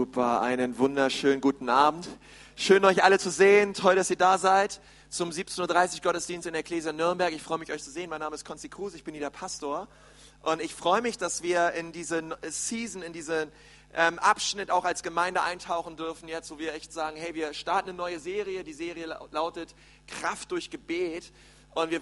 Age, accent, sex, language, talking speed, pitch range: 40-59, German, male, German, 205 wpm, 160-195 Hz